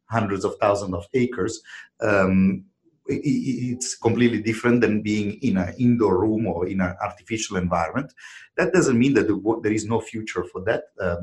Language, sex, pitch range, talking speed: English, male, 90-120 Hz, 165 wpm